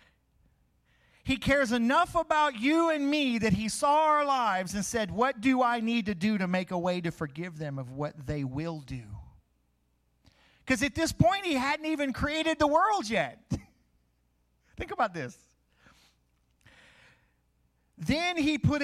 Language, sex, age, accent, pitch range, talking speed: English, male, 40-59, American, 165-260 Hz, 155 wpm